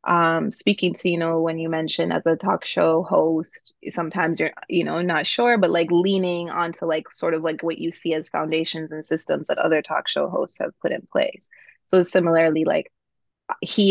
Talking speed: 205 wpm